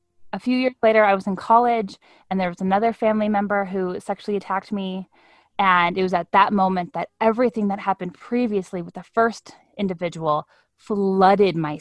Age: 10-29